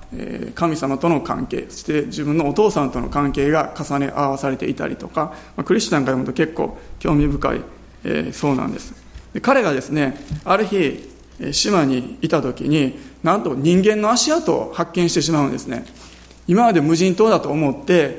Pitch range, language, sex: 140-175 Hz, Japanese, male